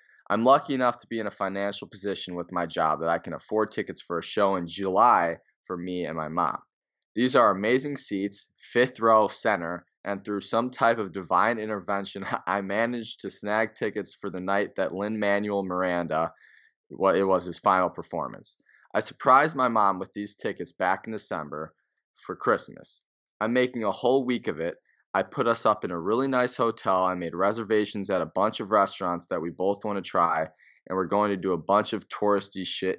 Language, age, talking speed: English, 20-39, 205 wpm